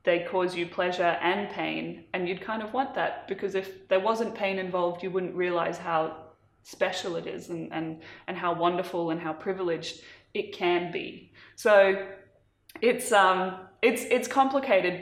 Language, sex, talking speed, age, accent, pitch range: English, female, 170 wpm, 20-39, Australian, 175-205 Hz